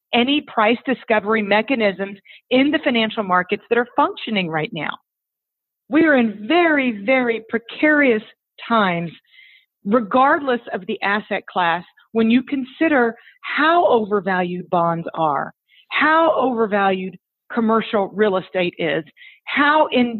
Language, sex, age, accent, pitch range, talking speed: English, female, 40-59, American, 215-275 Hz, 120 wpm